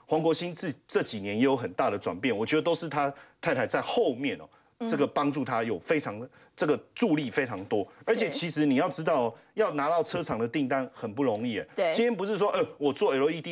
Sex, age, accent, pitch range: male, 30-49, native, 155-245 Hz